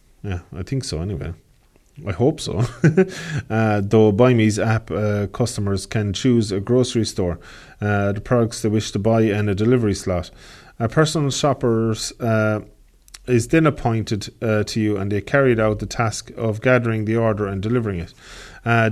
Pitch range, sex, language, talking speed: 100-120 Hz, male, English, 170 wpm